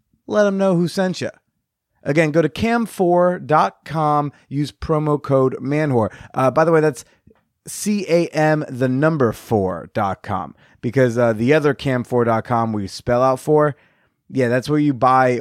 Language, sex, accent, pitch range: English, male, American, 120-160 Hz